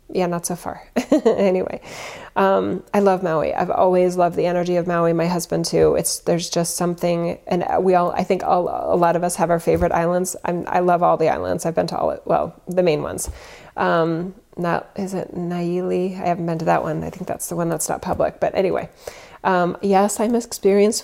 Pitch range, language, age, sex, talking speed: 175-205 Hz, English, 30-49, female, 210 wpm